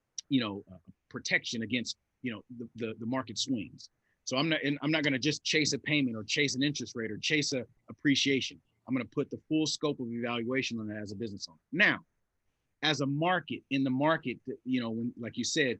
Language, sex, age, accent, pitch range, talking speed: English, male, 30-49, American, 120-150 Hz, 235 wpm